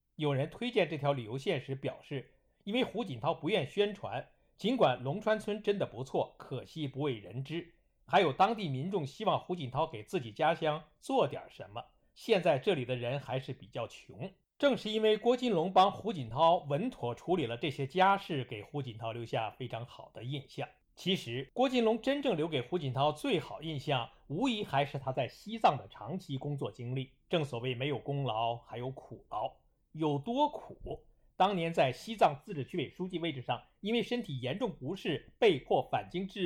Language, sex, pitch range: Chinese, male, 130-190 Hz